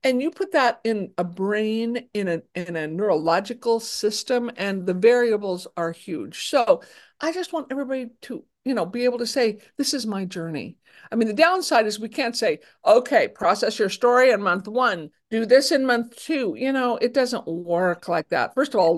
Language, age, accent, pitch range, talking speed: English, 50-69, American, 195-280 Hz, 200 wpm